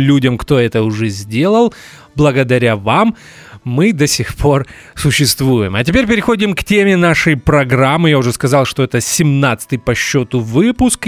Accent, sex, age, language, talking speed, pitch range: native, male, 30-49, Russian, 150 wpm, 120-175 Hz